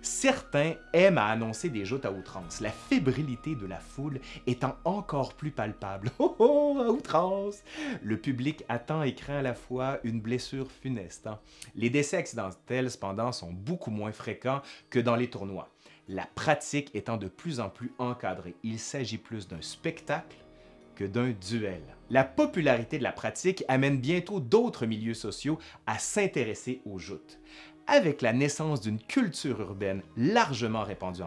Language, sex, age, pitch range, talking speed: French, male, 30-49, 105-145 Hz, 150 wpm